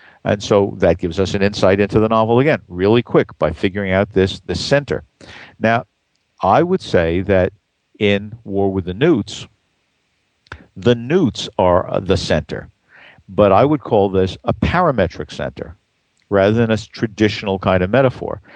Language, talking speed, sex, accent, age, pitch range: English, 160 wpm, male, American, 50-69, 95-120 Hz